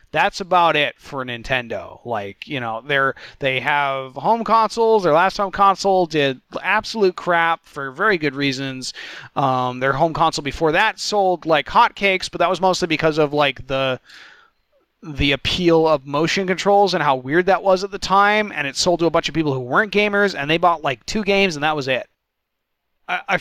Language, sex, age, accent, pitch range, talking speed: English, male, 30-49, American, 135-175 Hz, 190 wpm